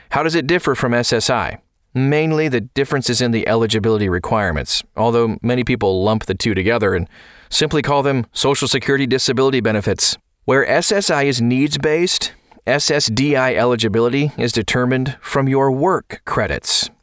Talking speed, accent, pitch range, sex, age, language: 145 wpm, American, 115-140 Hz, male, 30-49, English